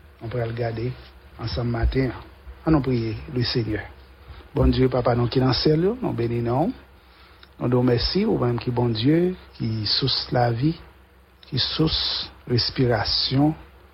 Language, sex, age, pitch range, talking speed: English, male, 60-79, 110-130 Hz, 150 wpm